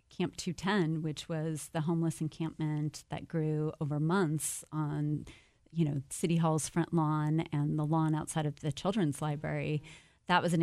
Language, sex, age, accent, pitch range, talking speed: English, female, 30-49, American, 150-170 Hz, 165 wpm